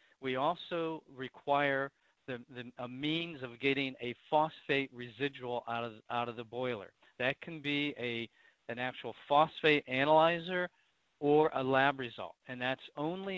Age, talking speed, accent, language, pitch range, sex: 40-59, 150 wpm, American, English, 120-145 Hz, male